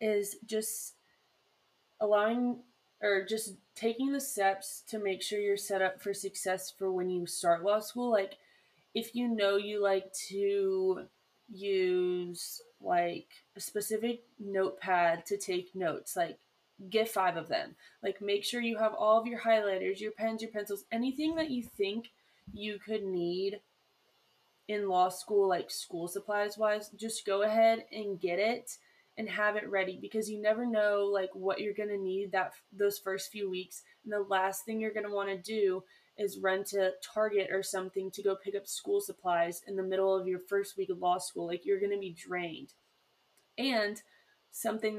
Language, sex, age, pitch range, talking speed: English, female, 20-39, 190-220 Hz, 175 wpm